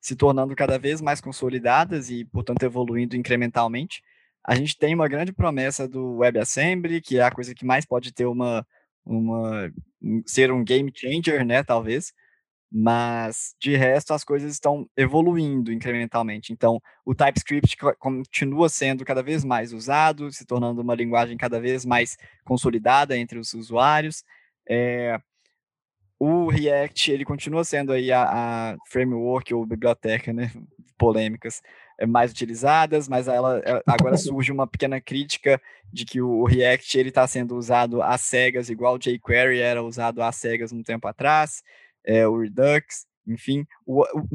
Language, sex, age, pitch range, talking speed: Portuguese, male, 20-39, 120-145 Hz, 150 wpm